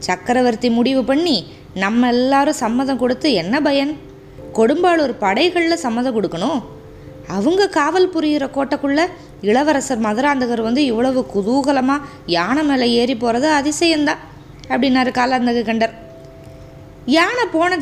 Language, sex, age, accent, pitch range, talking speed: Tamil, female, 20-39, native, 210-285 Hz, 110 wpm